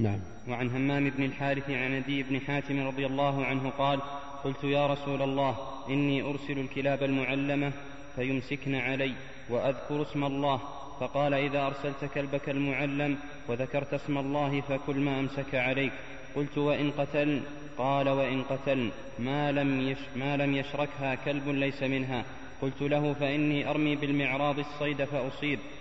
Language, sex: Arabic, male